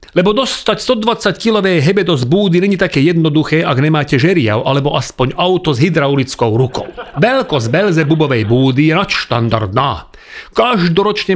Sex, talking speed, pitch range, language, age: male, 130 wpm, 140-195 Hz, Slovak, 40-59